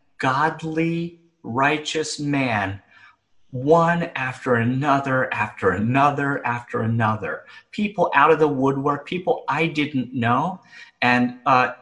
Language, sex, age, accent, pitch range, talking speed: English, male, 30-49, American, 110-155 Hz, 105 wpm